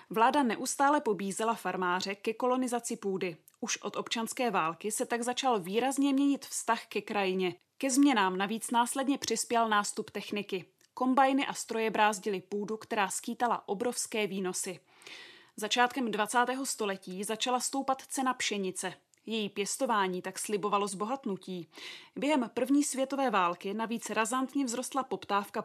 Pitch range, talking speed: 200-255 Hz, 130 wpm